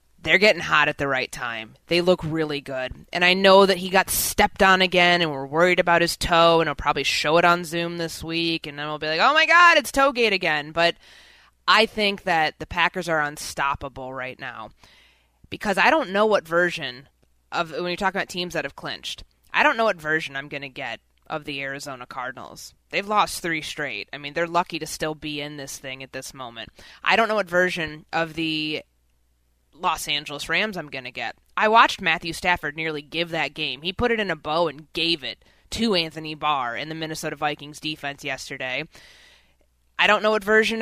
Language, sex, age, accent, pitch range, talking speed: English, female, 20-39, American, 150-195 Hz, 215 wpm